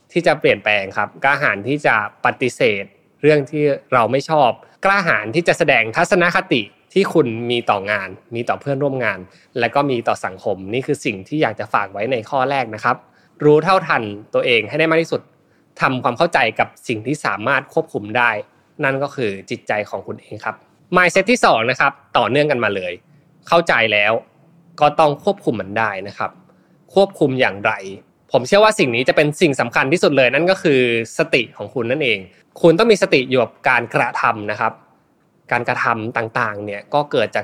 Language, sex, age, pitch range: Thai, male, 20-39, 115-160 Hz